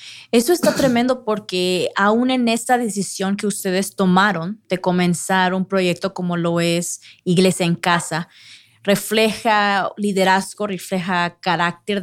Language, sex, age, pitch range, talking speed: Spanish, female, 20-39, 175-205 Hz, 125 wpm